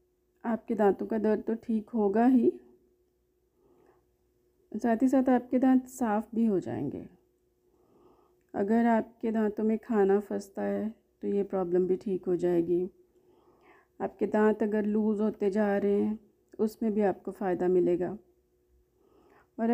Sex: female